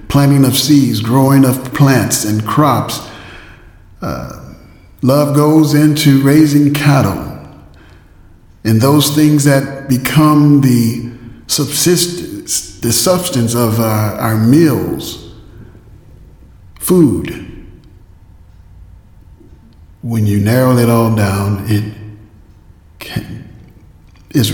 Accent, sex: American, male